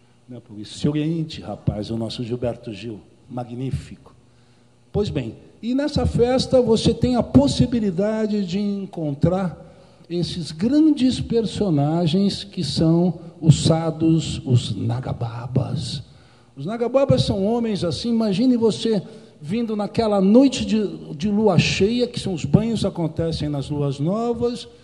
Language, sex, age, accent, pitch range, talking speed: Portuguese, male, 60-79, Brazilian, 135-200 Hz, 120 wpm